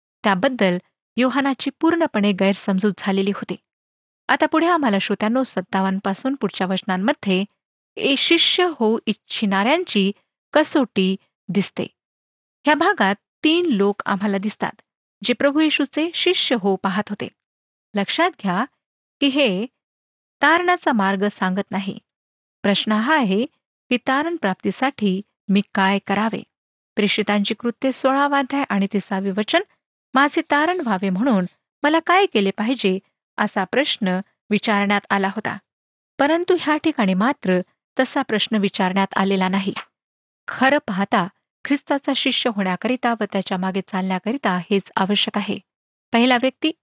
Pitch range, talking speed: 195-280 Hz, 110 wpm